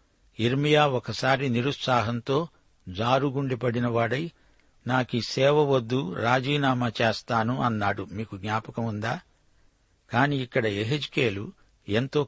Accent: native